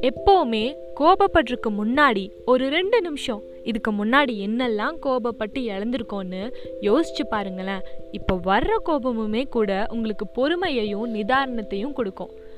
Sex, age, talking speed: female, 20-39, 100 wpm